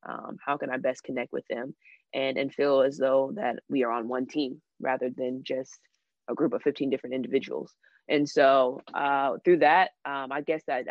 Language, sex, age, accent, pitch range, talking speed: English, female, 20-39, American, 130-150 Hz, 205 wpm